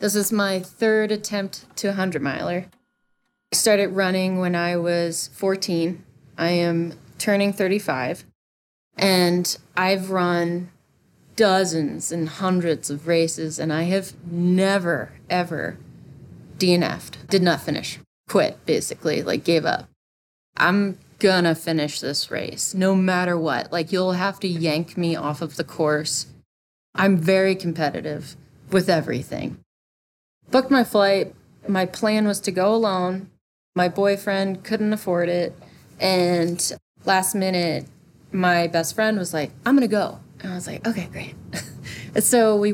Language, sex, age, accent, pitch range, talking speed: English, female, 20-39, American, 165-195 Hz, 140 wpm